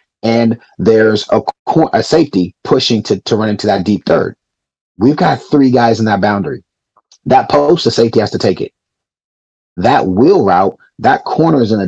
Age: 30-49